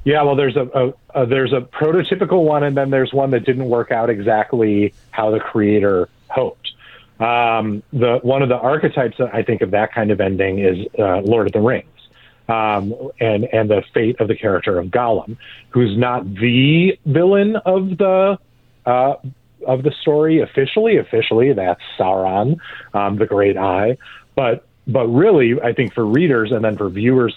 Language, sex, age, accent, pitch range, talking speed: English, male, 30-49, American, 110-135 Hz, 180 wpm